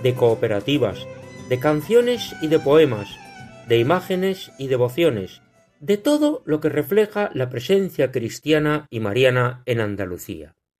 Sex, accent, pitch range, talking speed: male, Spanish, 130-205 Hz, 130 wpm